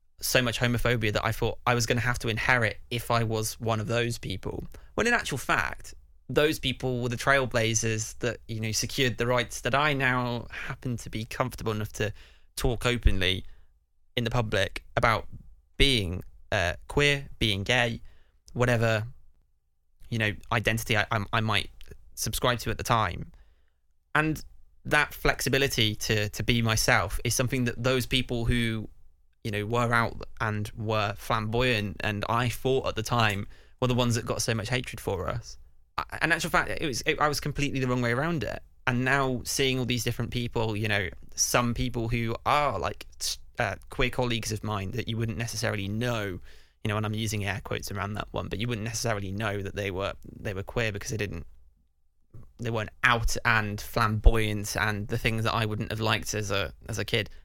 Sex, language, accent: male, English, British